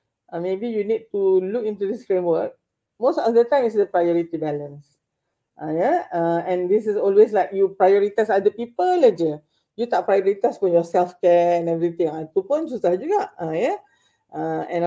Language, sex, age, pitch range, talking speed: Malay, female, 40-59, 175-240 Hz, 200 wpm